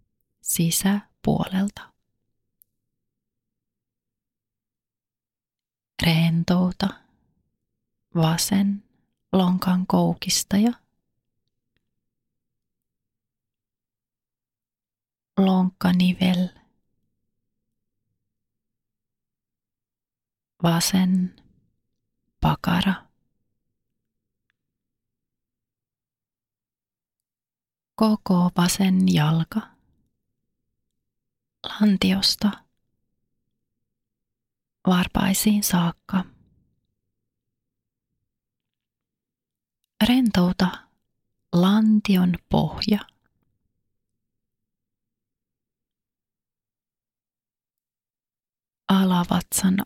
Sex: female